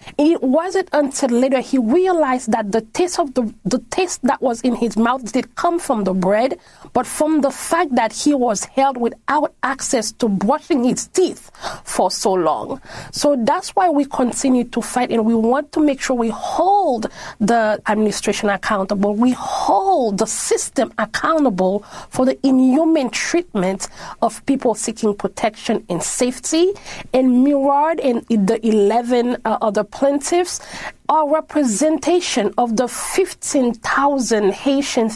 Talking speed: 150 wpm